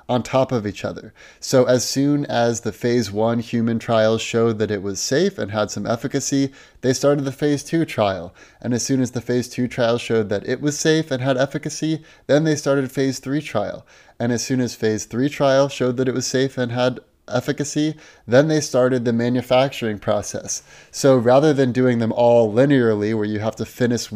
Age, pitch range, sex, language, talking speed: 30-49, 110-135 Hz, male, English, 210 wpm